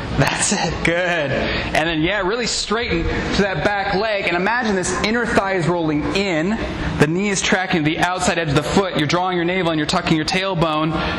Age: 20-39